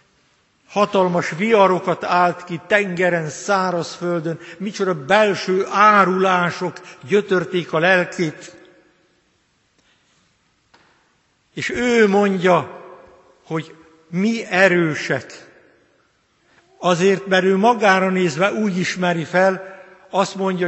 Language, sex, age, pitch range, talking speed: Hungarian, male, 60-79, 165-200 Hz, 80 wpm